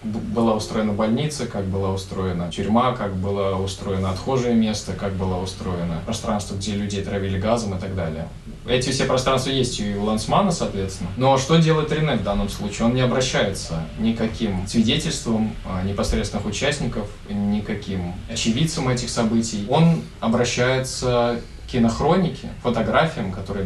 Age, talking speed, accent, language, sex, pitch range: 20-39, 140 wpm, native, Russian, male, 100-125 Hz